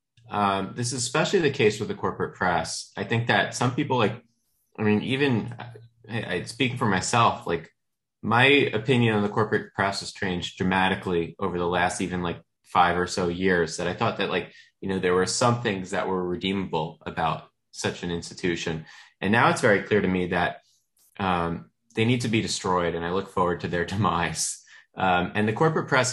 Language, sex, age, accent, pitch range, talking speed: English, male, 20-39, American, 95-120 Hz, 200 wpm